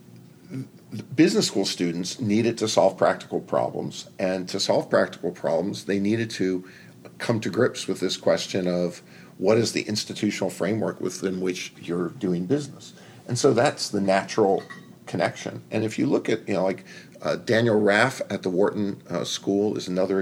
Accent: American